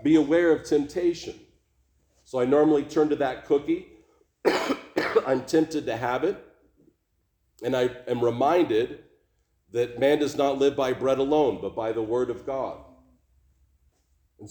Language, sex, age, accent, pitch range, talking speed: English, male, 40-59, American, 115-150 Hz, 145 wpm